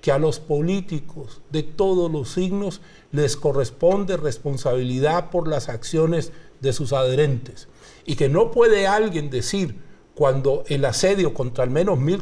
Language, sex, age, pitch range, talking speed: Spanish, male, 50-69, 130-175 Hz, 145 wpm